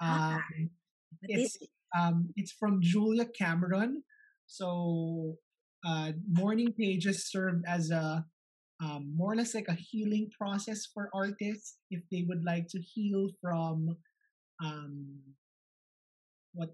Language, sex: English, male